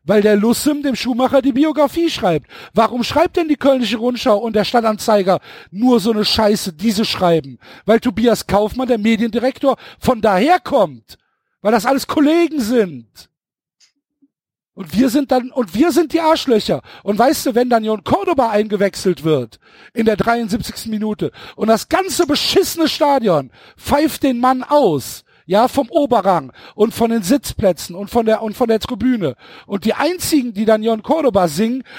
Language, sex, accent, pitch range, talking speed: German, male, German, 205-280 Hz, 165 wpm